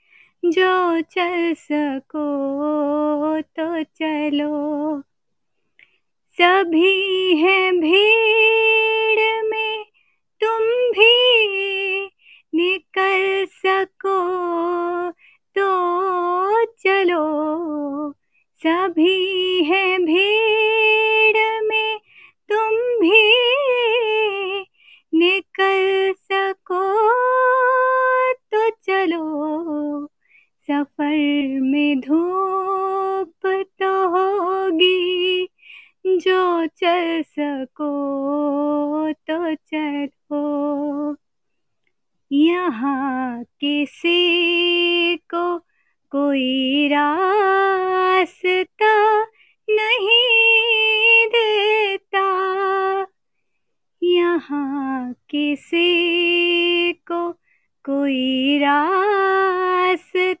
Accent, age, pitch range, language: native, 30-49, 310-390 Hz, Hindi